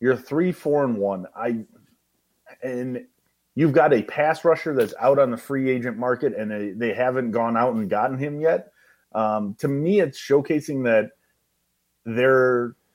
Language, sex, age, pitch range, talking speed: English, male, 30-49, 115-160 Hz, 160 wpm